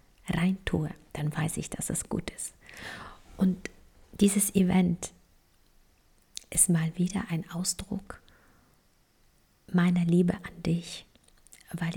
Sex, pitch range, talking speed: female, 165-190 Hz, 105 wpm